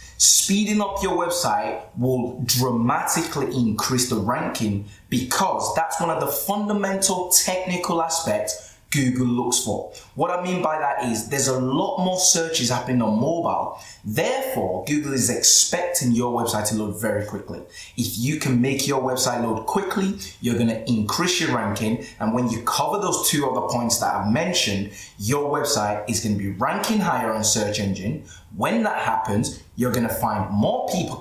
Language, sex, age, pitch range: English, male, 20-39, 105-140 Hz